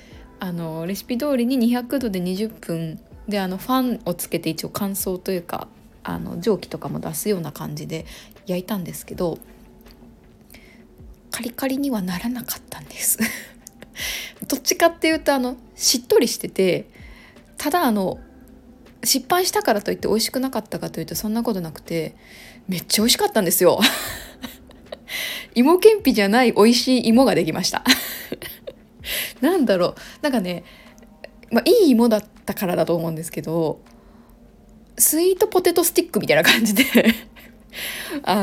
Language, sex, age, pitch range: Japanese, female, 20-39, 185-270 Hz